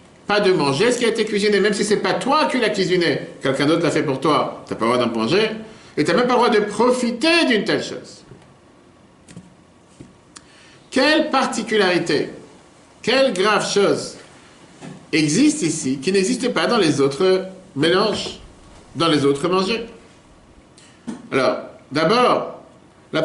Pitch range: 130-205 Hz